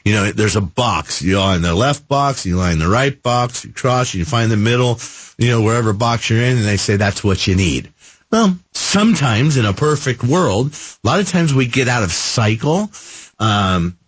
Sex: male